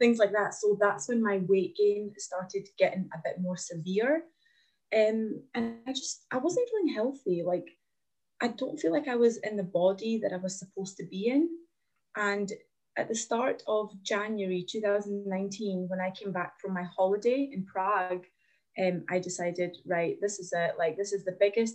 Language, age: English, 20-39